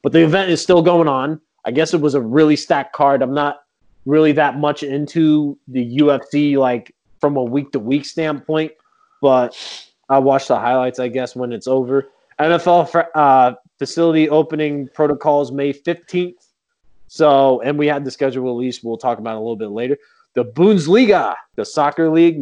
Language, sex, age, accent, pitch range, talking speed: English, male, 20-39, American, 130-160 Hz, 175 wpm